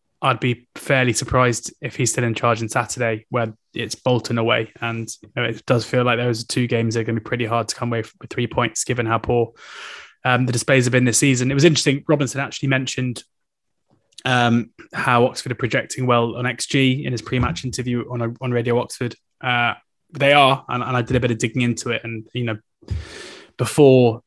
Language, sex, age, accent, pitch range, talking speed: English, male, 20-39, British, 115-130 Hz, 220 wpm